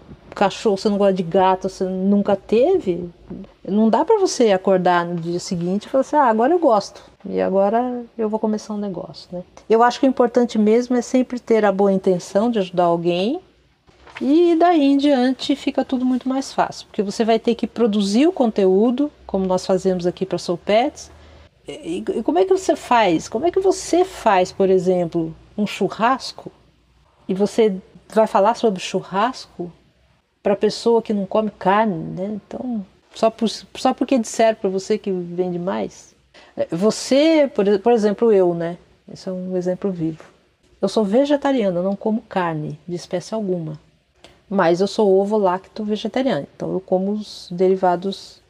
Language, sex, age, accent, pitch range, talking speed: Portuguese, female, 40-59, Brazilian, 185-240 Hz, 175 wpm